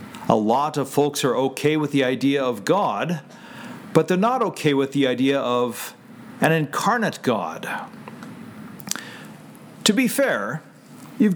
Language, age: English, 50-69